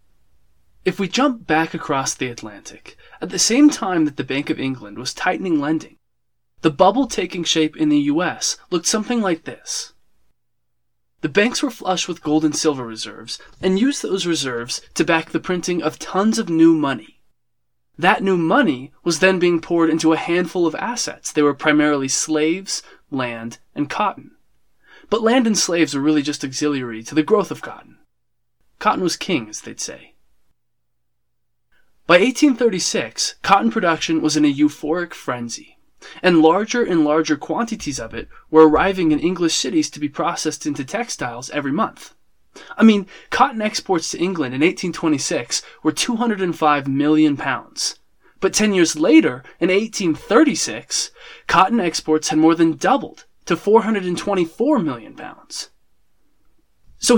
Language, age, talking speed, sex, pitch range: English, 20-39, 155 wpm, male, 150-200 Hz